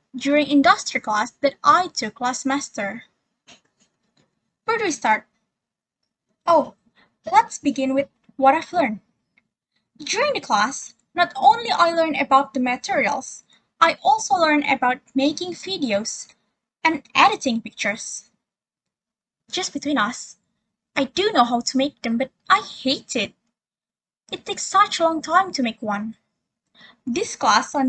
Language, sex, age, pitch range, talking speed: English, female, 10-29, 240-330 Hz, 140 wpm